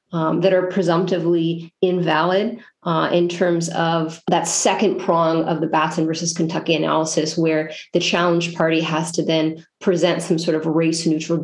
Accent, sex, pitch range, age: American, female, 165-200 Hz, 30-49